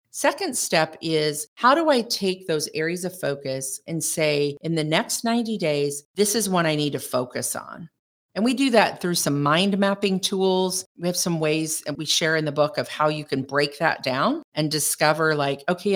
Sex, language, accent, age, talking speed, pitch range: female, English, American, 50-69, 210 wpm, 150-205 Hz